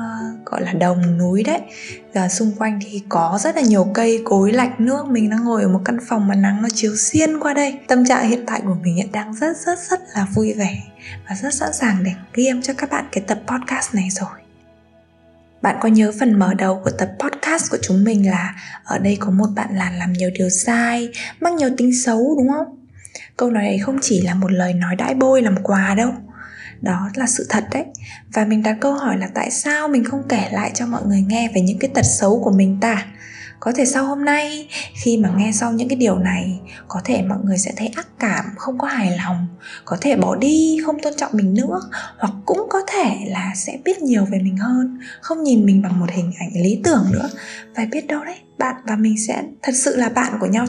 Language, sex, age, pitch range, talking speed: Vietnamese, female, 20-39, 195-260 Hz, 235 wpm